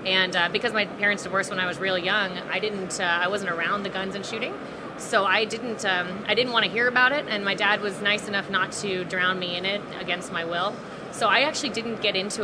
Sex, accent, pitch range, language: female, American, 185-215 Hz, English